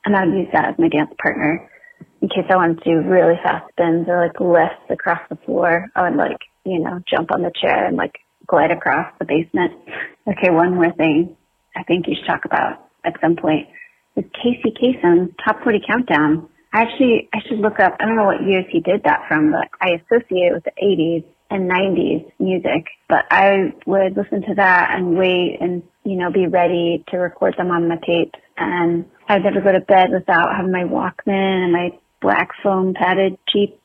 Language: English